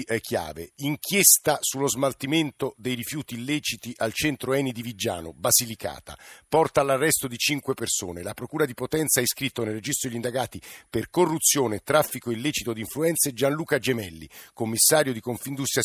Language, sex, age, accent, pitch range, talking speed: Italian, male, 50-69, native, 115-150 Hz, 150 wpm